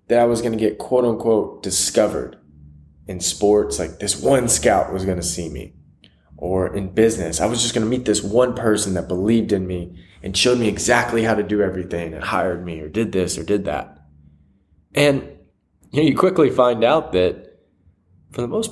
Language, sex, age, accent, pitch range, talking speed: English, male, 20-39, American, 90-115 Hz, 200 wpm